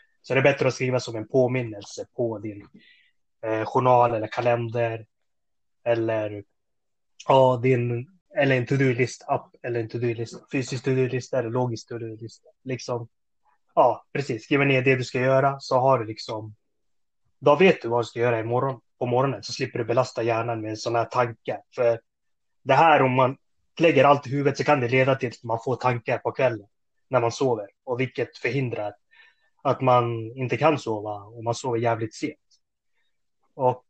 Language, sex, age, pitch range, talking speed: Swedish, male, 20-39, 115-135 Hz, 185 wpm